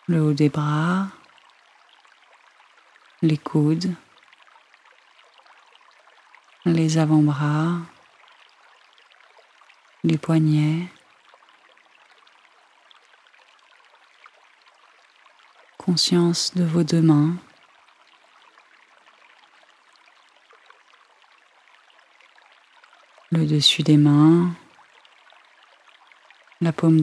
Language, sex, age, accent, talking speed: French, female, 40-59, French, 45 wpm